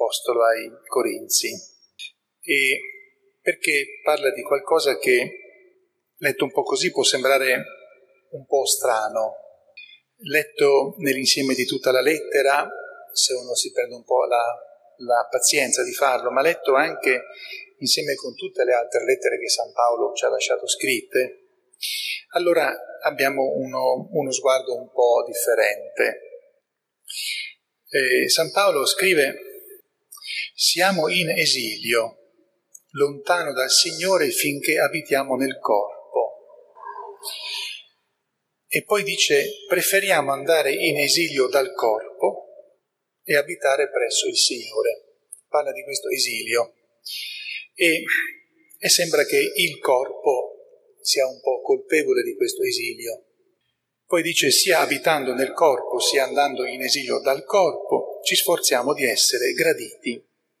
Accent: native